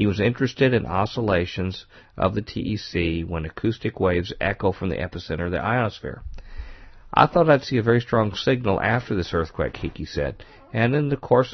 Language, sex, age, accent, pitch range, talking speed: English, male, 50-69, American, 85-115 Hz, 180 wpm